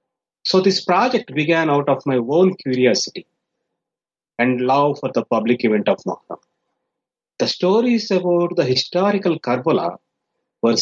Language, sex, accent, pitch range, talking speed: English, male, Indian, 130-185 Hz, 135 wpm